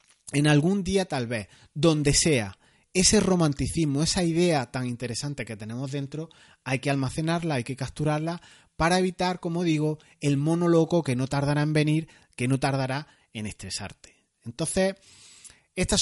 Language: Spanish